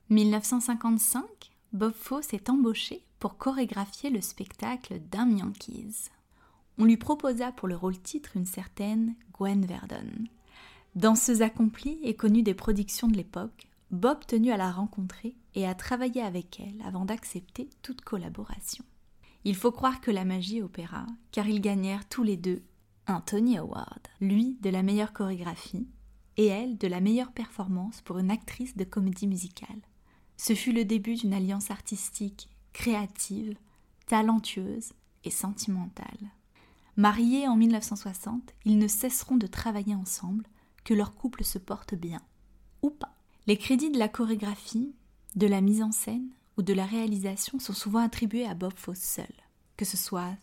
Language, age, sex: French, 20-39, female